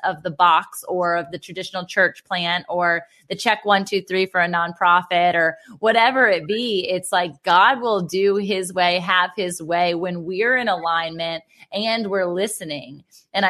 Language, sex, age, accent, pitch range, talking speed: English, female, 20-39, American, 180-215 Hz, 180 wpm